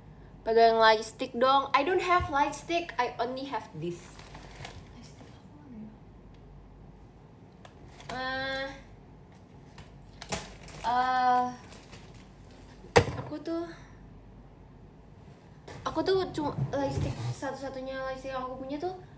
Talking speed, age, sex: 95 wpm, 20-39, female